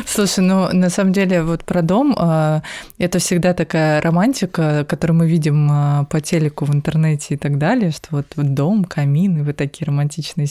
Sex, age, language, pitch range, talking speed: female, 20-39, Russian, 150-180 Hz, 175 wpm